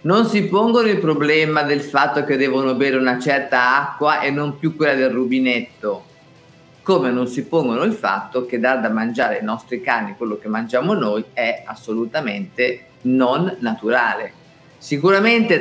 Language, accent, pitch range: Italian, native, 120-160 Hz